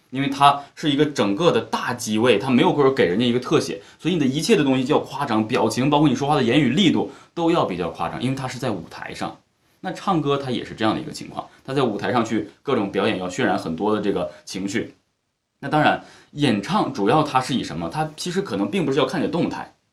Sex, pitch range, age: male, 110-155 Hz, 20-39